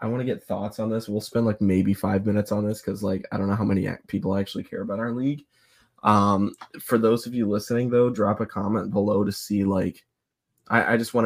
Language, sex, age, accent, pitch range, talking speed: English, male, 20-39, American, 105-115 Hz, 245 wpm